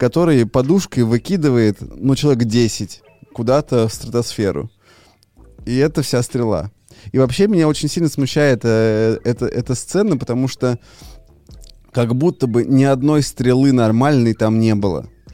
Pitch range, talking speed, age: 115-140 Hz, 140 wpm, 20-39